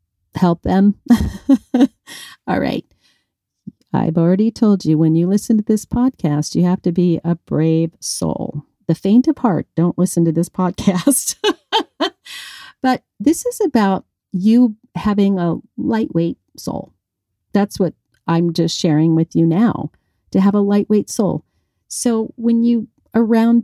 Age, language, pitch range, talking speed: 40-59, English, 165-230 Hz, 140 wpm